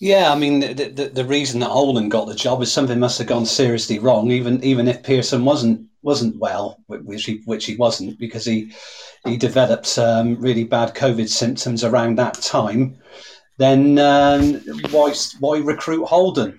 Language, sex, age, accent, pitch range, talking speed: English, male, 40-59, British, 120-140 Hz, 175 wpm